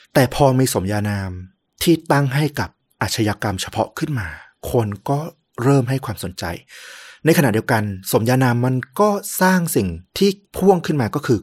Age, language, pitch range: 30-49, Thai, 100-130 Hz